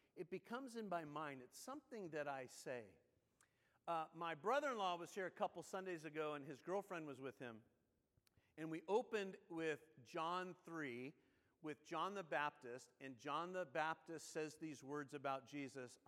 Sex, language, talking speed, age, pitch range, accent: male, English, 165 wpm, 50-69, 140-195 Hz, American